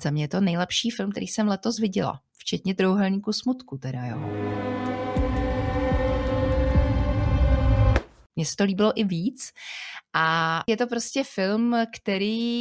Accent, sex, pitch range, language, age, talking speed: native, female, 165-215 Hz, Czech, 30-49, 130 wpm